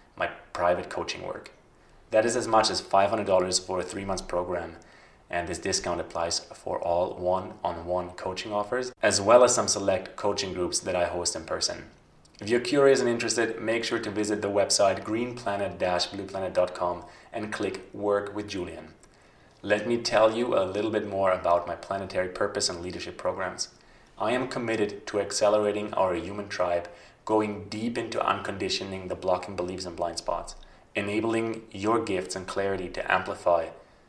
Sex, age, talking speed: male, 30-49, 160 wpm